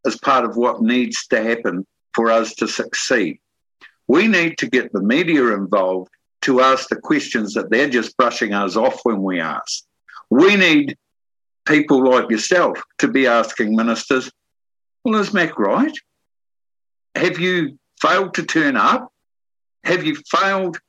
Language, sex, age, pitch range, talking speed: English, male, 60-79, 130-215 Hz, 150 wpm